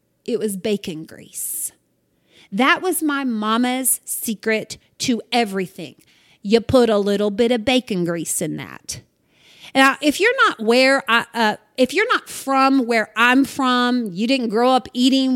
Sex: female